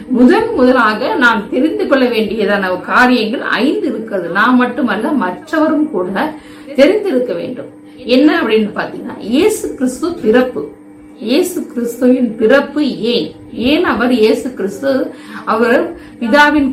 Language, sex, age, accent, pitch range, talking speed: Tamil, female, 50-69, native, 225-280 Hz, 95 wpm